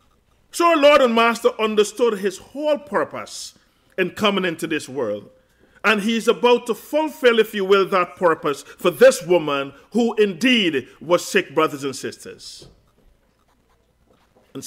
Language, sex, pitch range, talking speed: English, male, 170-240 Hz, 145 wpm